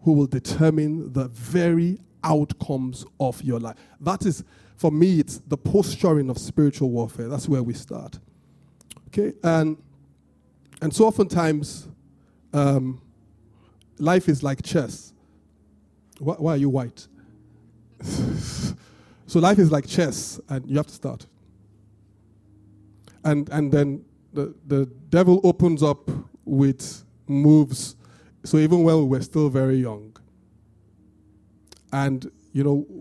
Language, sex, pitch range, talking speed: English, male, 115-160 Hz, 125 wpm